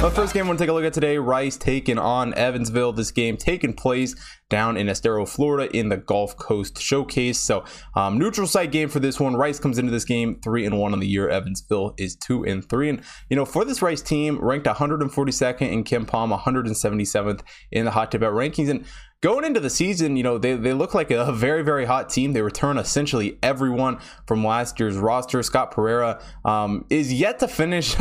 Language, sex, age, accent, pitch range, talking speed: English, male, 20-39, American, 110-135 Hz, 215 wpm